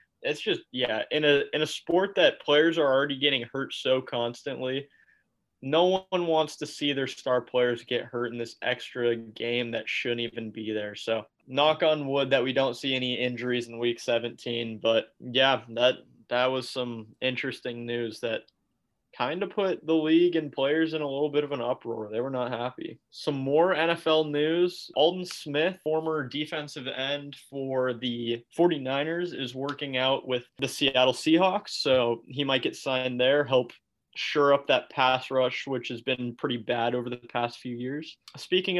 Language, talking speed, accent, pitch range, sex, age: English, 180 wpm, American, 125-155 Hz, male, 20-39